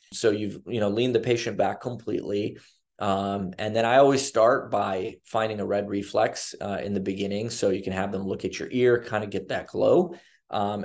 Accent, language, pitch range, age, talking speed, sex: American, English, 100-115 Hz, 20-39, 215 wpm, male